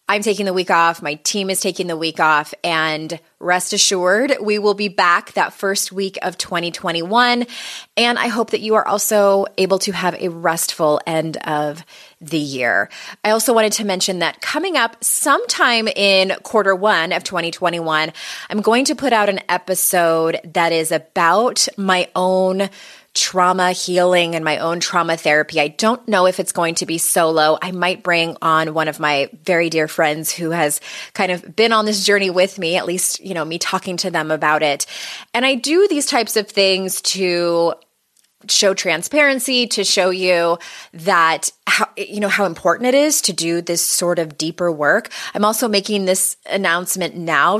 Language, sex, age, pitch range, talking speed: English, female, 20-39, 165-215 Hz, 185 wpm